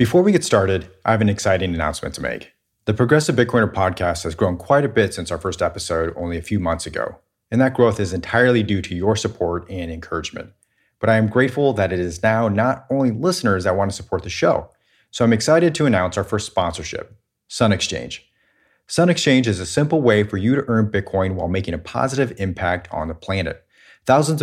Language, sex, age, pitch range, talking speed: English, male, 30-49, 90-120 Hz, 215 wpm